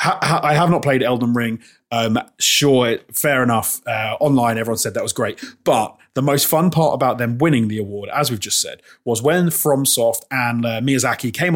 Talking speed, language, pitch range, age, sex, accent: 195 wpm, English, 115-155 Hz, 30-49, male, British